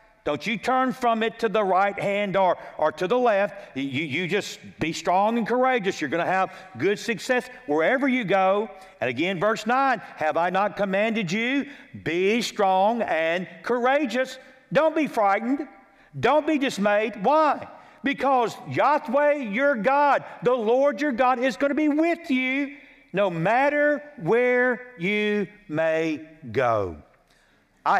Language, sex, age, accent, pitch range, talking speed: English, male, 50-69, American, 160-240 Hz, 150 wpm